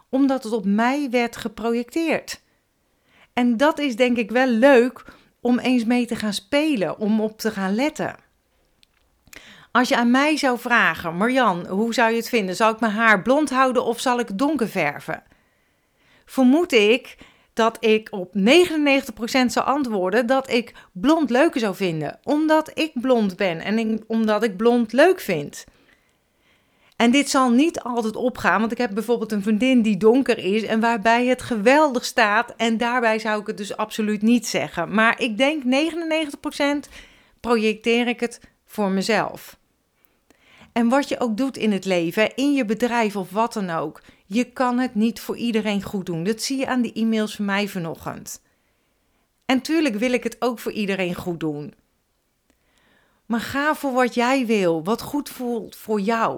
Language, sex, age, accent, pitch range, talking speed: Dutch, female, 40-59, Dutch, 215-255 Hz, 170 wpm